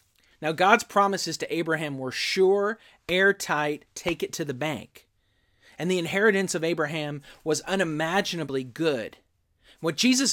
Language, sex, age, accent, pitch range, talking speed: English, male, 30-49, American, 120-185 Hz, 135 wpm